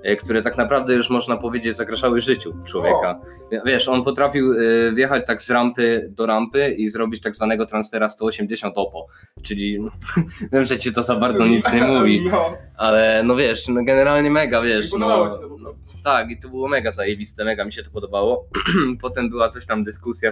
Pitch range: 105-125 Hz